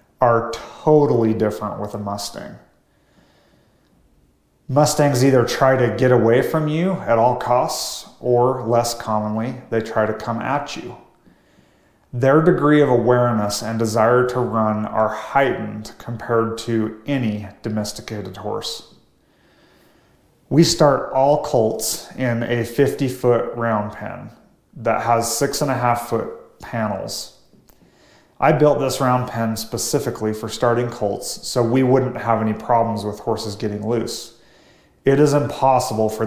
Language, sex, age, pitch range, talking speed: English, male, 30-49, 110-135 Hz, 135 wpm